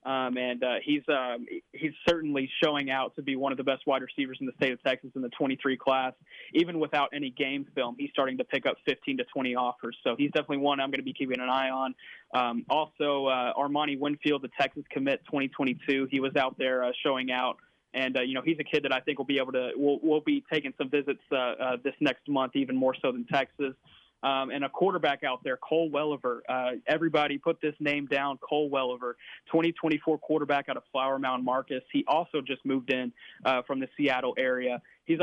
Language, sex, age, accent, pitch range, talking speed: English, male, 20-39, American, 130-150 Hz, 225 wpm